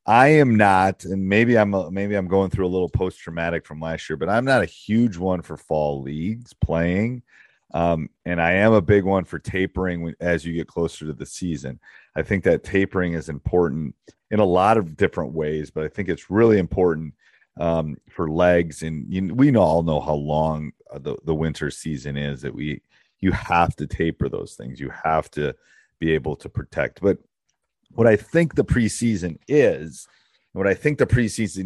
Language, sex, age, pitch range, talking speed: English, male, 30-49, 80-100 Hz, 200 wpm